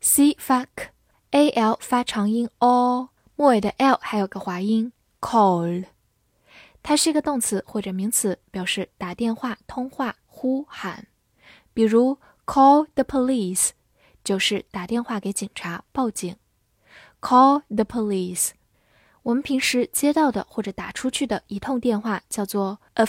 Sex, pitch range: female, 195-260 Hz